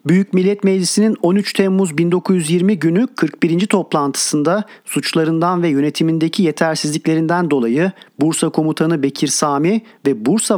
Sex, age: male, 40-59